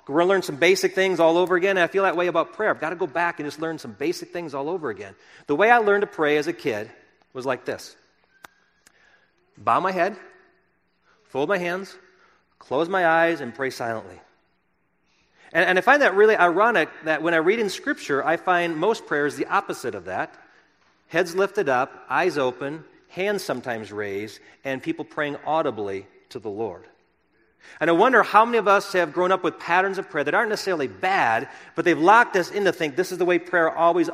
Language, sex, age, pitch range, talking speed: English, male, 40-59, 150-190 Hz, 215 wpm